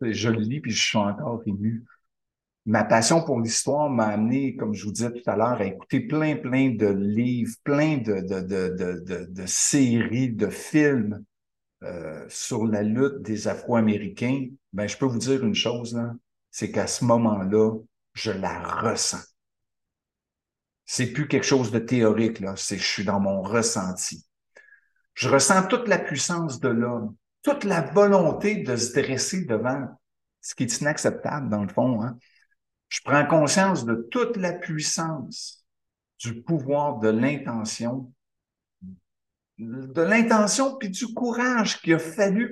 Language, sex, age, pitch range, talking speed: French, male, 60-79, 110-160 Hz, 160 wpm